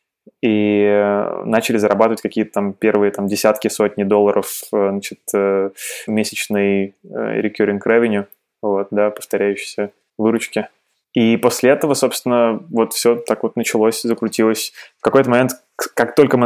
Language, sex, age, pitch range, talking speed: Russian, male, 20-39, 105-115 Hz, 115 wpm